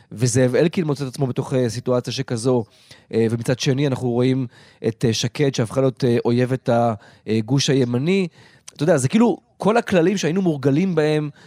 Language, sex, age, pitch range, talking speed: Hebrew, male, 30-49, 125-160 Hz, 145 wpm